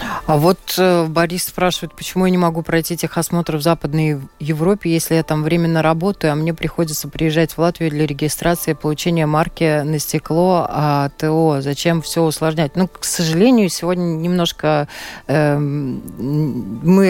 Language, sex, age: Russian, female, 20-39